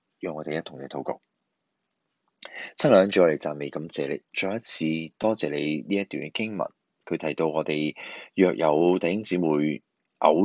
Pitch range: 75-85 Hz